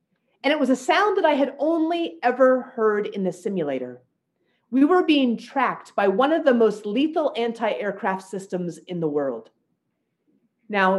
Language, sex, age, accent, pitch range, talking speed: English, female, 30-49, American, 185-265 Hz, 165 wpm